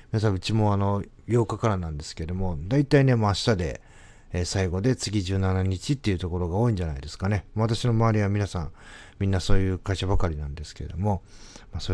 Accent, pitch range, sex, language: native, 85-115 Hz, male, Japanese